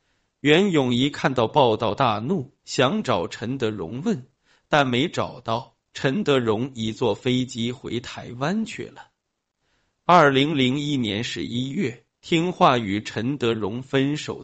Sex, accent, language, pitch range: male, native, Chinese, 120-145 Hz